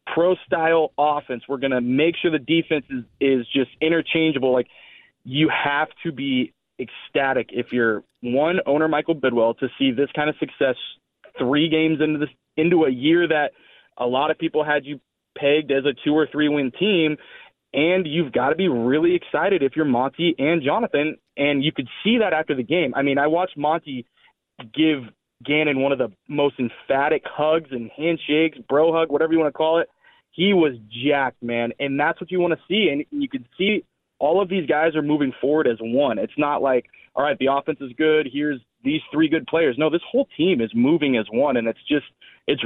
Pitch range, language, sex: 135-160 Hz, English, male